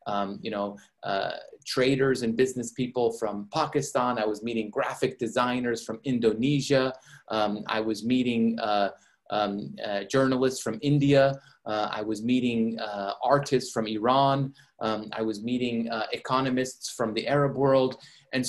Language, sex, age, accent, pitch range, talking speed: English, male, 30-49, American, 110-135 Hz, 150 wpm